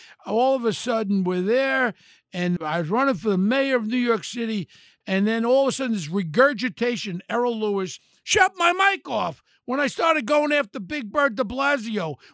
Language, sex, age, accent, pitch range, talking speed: English, male, 60-79, American, 195-270 Hz, 195 wpm